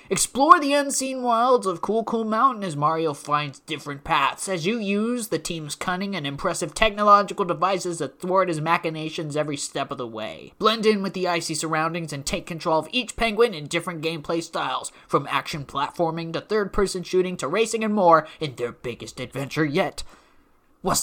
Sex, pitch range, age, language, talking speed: male, 150-215 Hz, 20-39, English, 185 wpm